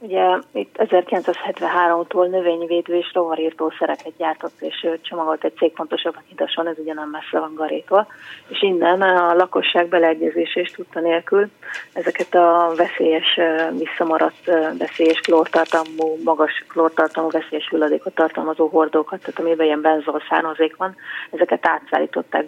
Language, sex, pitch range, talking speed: Hungarian, female, 160-180 Hz, 125 wpm